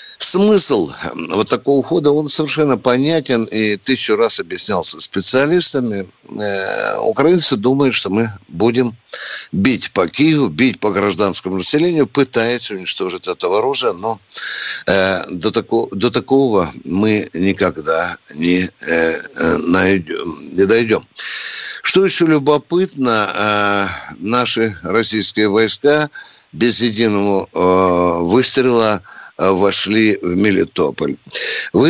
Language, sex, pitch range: Russian, male, 100-135 Hz